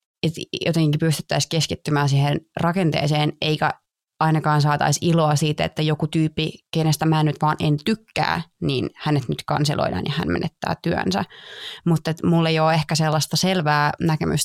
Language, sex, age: Finnish, female, 20-39